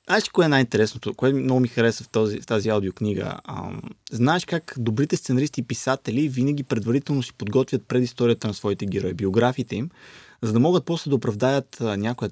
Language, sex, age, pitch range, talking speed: Bulgarian, male, 20-39, 115-150 Hz, 185 wpm